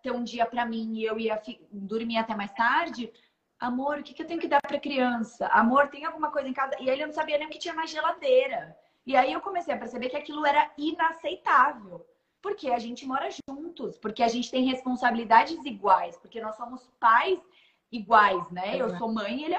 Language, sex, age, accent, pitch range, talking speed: Portuguese, female, 20-39, Brazilian, 220-290 Hz, 215 wpm